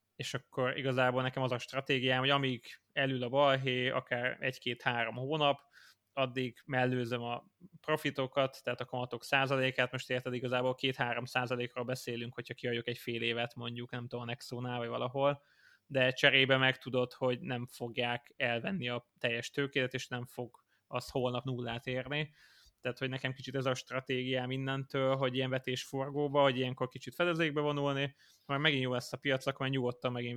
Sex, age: male, 20-39